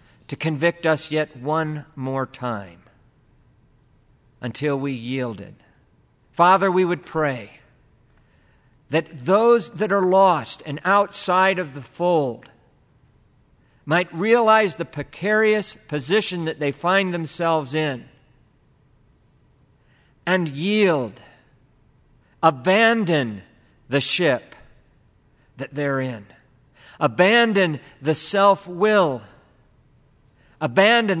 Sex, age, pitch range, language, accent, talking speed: male, 50-69, 125-175 Hz, English, American, 90 wpm